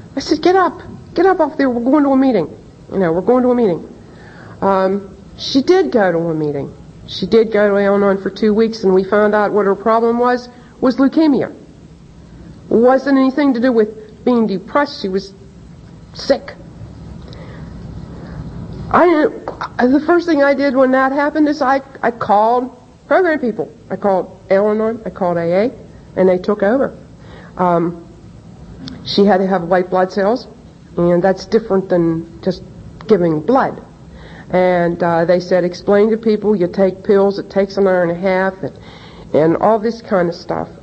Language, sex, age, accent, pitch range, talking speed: English, female, 60-79, American, 180-245 Hz, 180 wpm